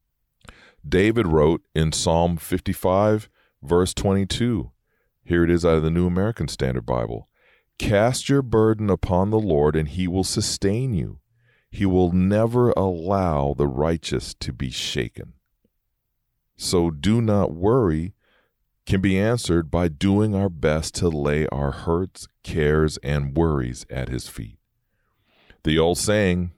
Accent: American